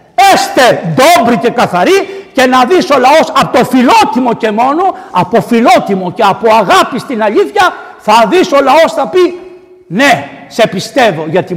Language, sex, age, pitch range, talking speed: Greek, male, 60-79, 150-255 Hz, 155 wpm